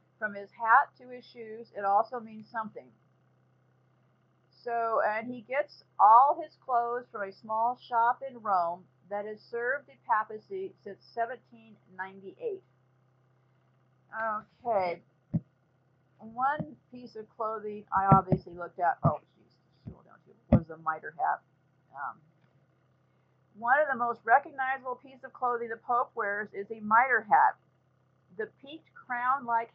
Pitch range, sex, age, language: 185-245 Hz, female, 50-69, English